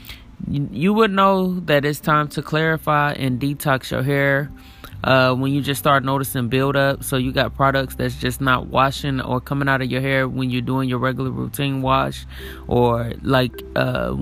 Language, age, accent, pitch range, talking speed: English, 20-39, American, 125-145 Hz, 180 wpm